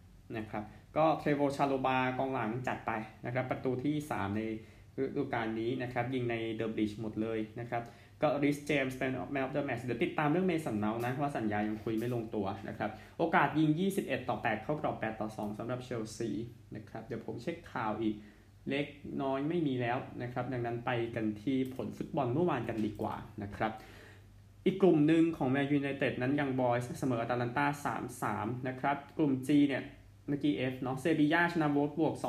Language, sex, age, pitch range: Thai, male, 20-39, 110-145 Hz